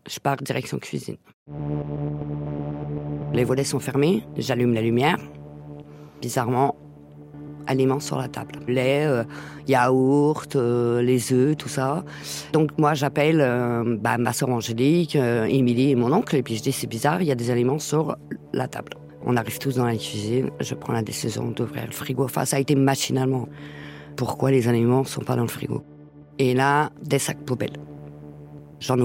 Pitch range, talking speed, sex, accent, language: 120-145 Hz, 175 wpm, female, French, French